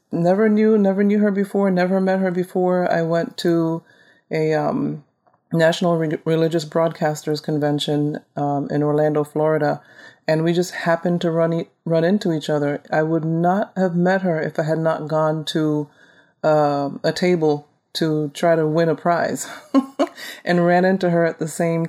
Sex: female